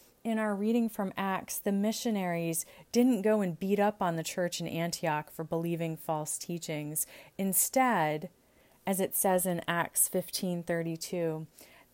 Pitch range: 160-205 Hz